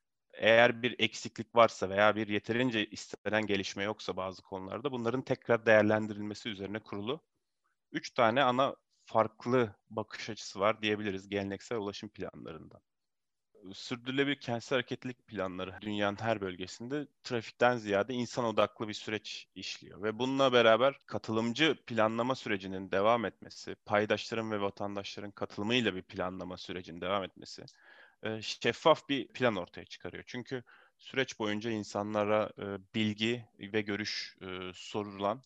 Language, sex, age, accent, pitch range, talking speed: Turkish, male, 30-49, native, 100-115 Hz, 125 wpm